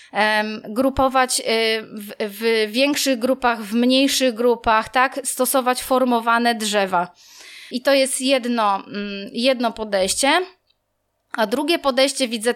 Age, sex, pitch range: 20-39, female, 220-275 Hz